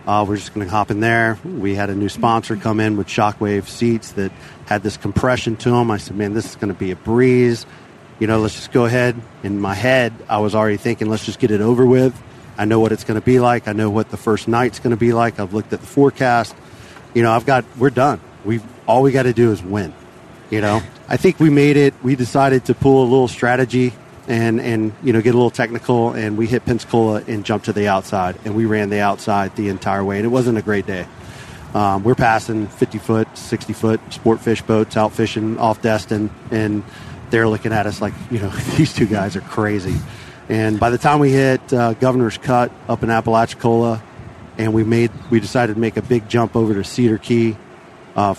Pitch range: 105-120 Hz